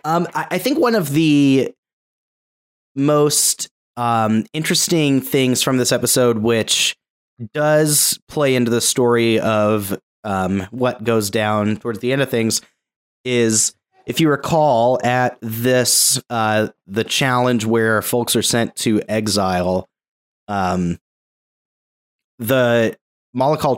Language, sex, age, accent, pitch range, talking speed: English, male, 30-49, American, 100-125 Hz, 120 wpm